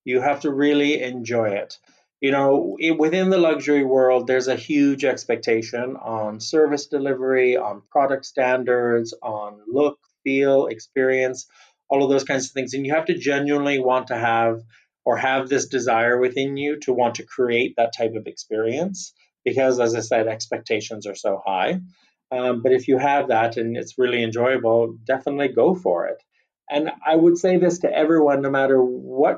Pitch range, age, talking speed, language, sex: 120-140 Hz, 30-49, 175 wpm, English, male